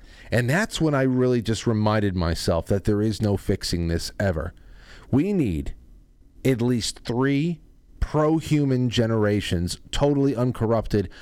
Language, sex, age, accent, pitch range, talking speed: English, male, 40-59, American, 95-125 Hz, 130 wpm